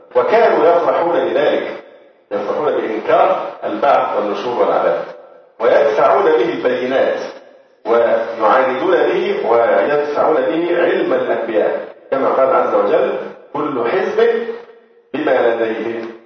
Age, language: 50-69, Arabic